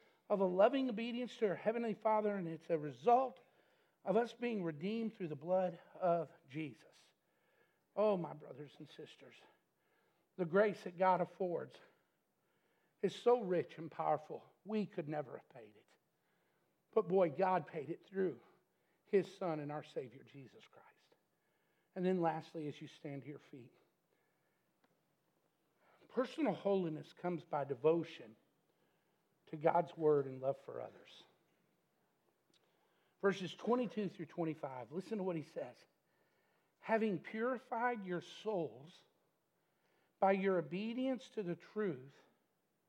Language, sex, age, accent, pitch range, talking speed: English, male, 60-79, American, 160-210 Hz, 135 wpm